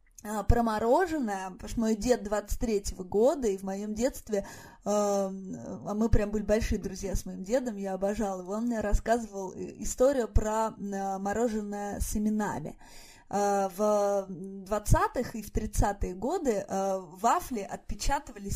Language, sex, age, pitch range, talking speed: Russian, female, 20-39, 200-235 Hz, 135 wpm